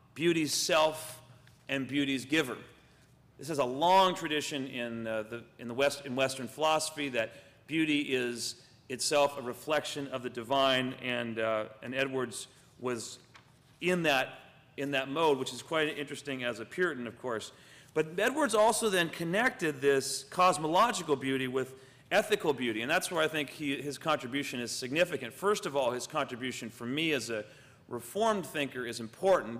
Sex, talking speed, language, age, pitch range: male, 165 wpm, English, 40-59, 125-155 Hz